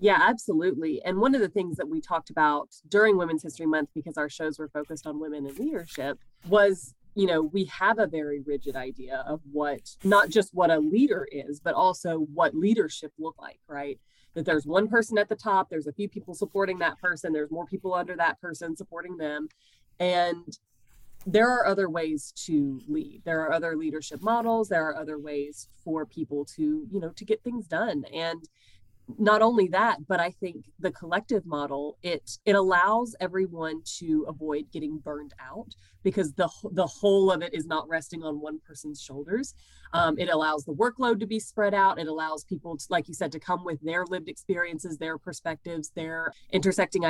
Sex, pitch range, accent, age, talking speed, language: female, 155-195 Hz, American, 20-39, 195 wpm, English